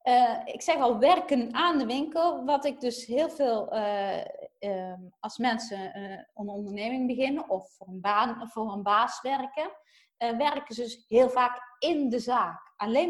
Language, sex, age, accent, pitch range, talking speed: Dutch, female, 20-39, Dutch, 225-285 Hz, 170 wpm